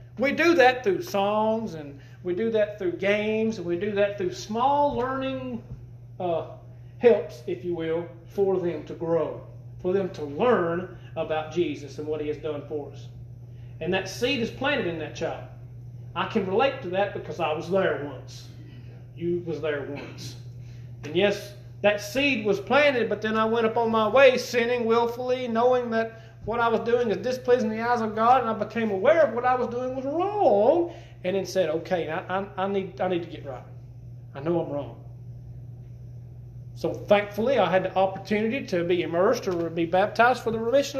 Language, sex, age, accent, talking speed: English, male, 40-59, American, 195 wpm